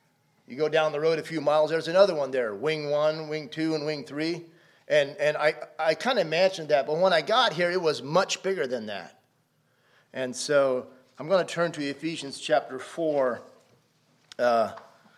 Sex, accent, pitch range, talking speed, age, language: male, American, 155-195 Hz, 190 wpm, 40-59, English